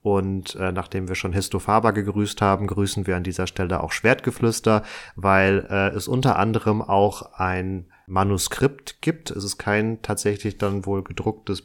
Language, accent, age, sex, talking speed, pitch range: German, German, 30-49, male, 160 wpm, 100-115 Hz